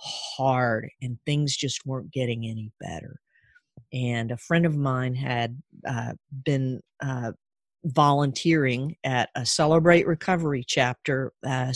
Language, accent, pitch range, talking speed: English, American, 120-145 Hz, 120 wpm